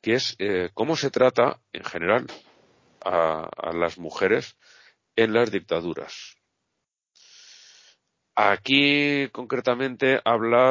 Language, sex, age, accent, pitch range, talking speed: Spanish, male, 40-59, Spanish, 90-130 Hz, 100 wpm